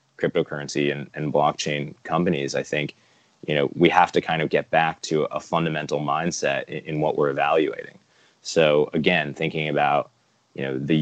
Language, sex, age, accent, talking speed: English, male, 20-39, American, 175 wpm